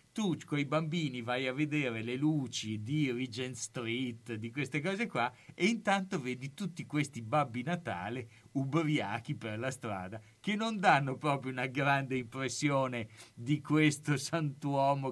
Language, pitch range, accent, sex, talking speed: Italian, 120-150 Hz, native, male, 145 wpm